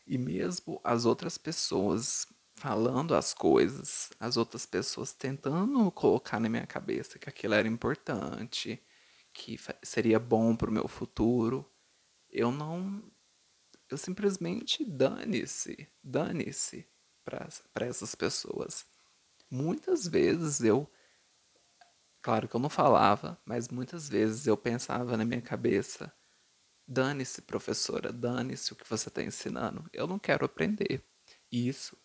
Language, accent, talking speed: Portuguese, Brazilian, 120 wpm